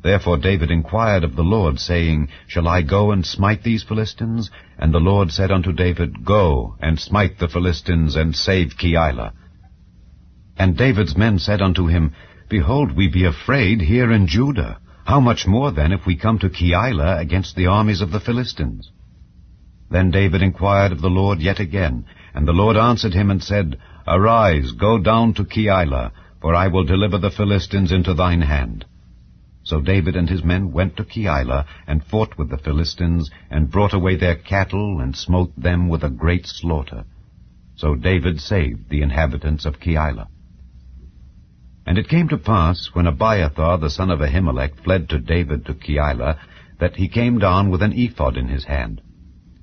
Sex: male